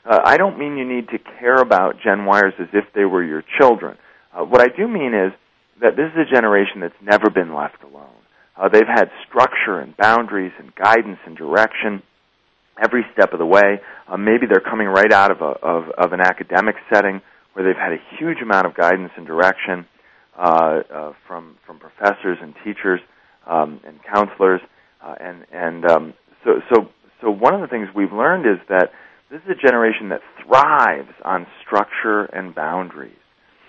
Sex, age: male, 40-59